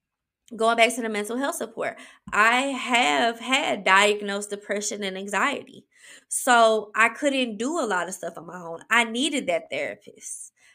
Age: 20-39